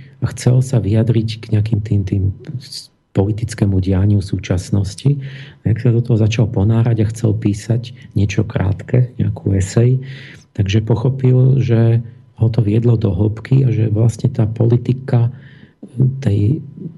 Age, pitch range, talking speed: 40-59, 95-120 Hz, 135 wpm